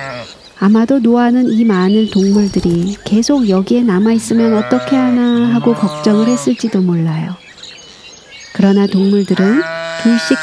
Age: 40-59